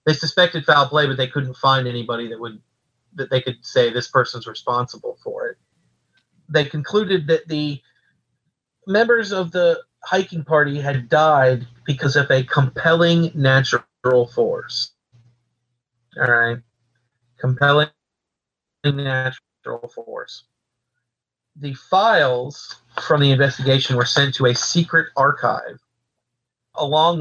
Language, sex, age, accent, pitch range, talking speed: English, male, 40-59, American, 120-155 Hz, 120 wpm